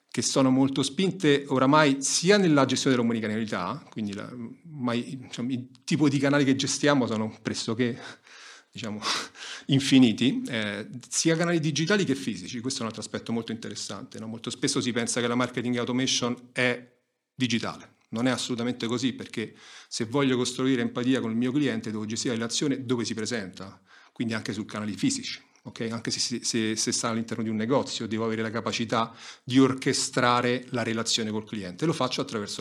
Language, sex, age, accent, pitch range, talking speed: Italian, male, 40-59, native, 115-140 Hz, 165 wpm